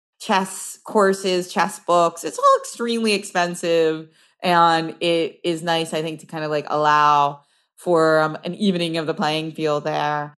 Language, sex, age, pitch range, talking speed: English, female, 30-49, 160-200 Hz, 160 wpm